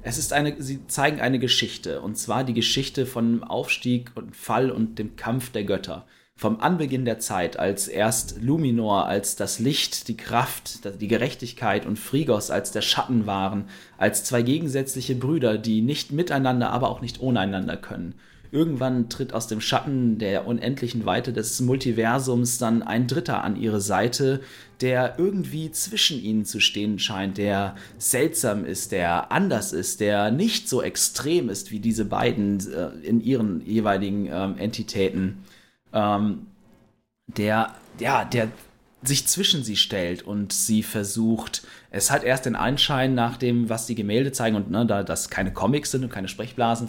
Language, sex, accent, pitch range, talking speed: German, male, German, 105-130 Hz, 165 wpm